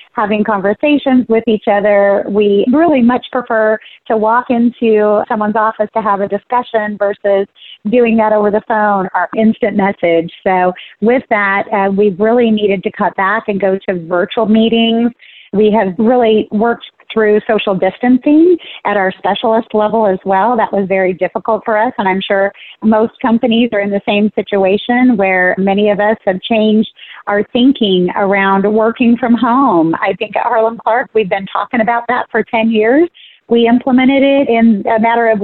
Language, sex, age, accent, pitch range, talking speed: English, female, 30-49, American, 195-230 Hz, 175 wpm